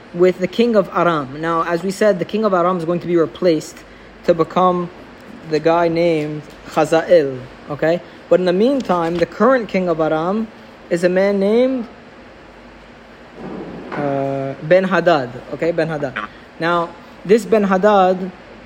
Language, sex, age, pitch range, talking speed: English, male, 20-39, 170-210 Hz, 155 wpm